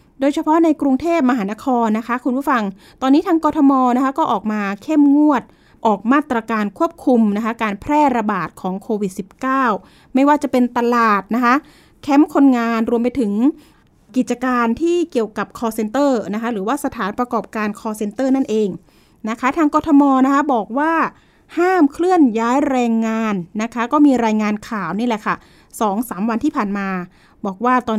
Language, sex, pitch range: Thai, female, 220-280 Hz